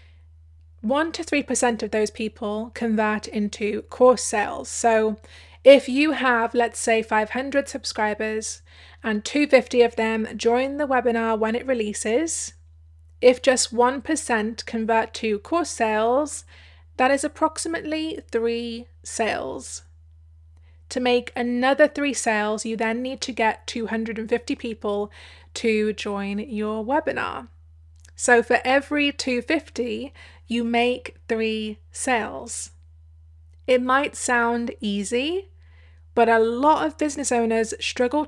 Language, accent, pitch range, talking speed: English, British, 205-245 Hz, 120 wpm